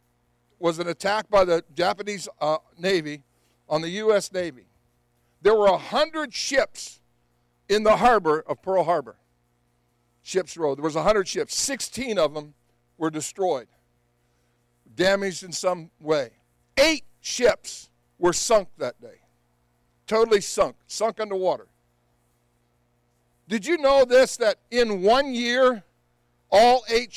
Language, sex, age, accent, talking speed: English, male, 60-79, American, 125 wpm